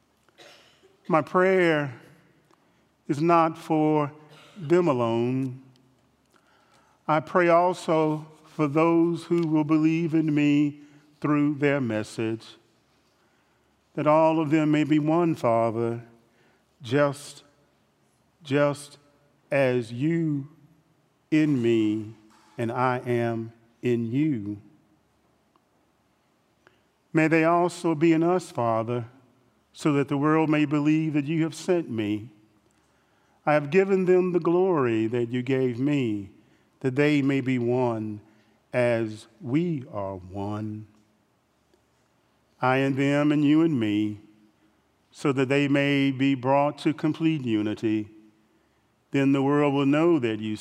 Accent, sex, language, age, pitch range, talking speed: American, male, English, 40-59, 115-155 Hz, 115 wpm